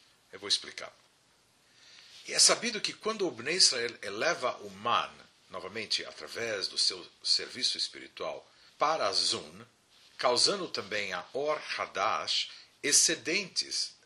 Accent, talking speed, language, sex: Brazilian, 125 wpm, Portuguese, male